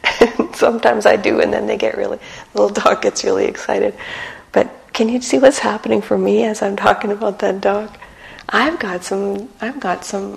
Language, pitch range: English, 165-210 Hz